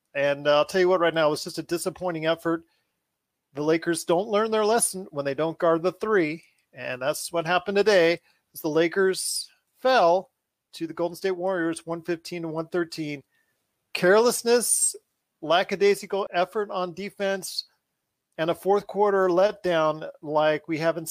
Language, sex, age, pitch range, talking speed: English, male, 40-59, 155-195 Hz, 150 wpm